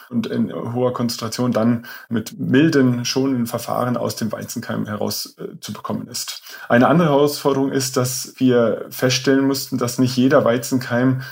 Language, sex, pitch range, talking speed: German, male, 120-135 Hz, 145 wpm